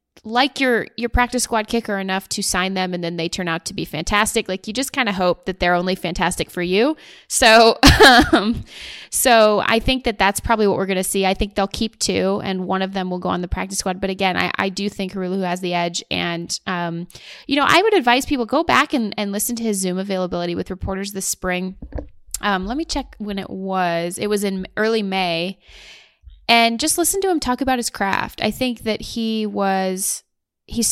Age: 20-39